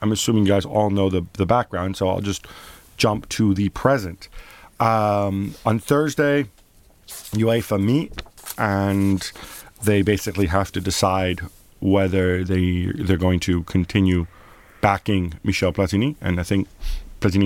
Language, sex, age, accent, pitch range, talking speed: English, male, 40-59, American, 90-110 Hz, 140 wpm